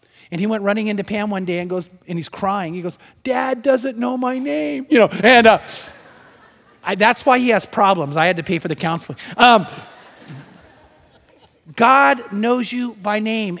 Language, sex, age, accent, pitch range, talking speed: English, male, 30-49, American, 170-225 Hz, 190 wpm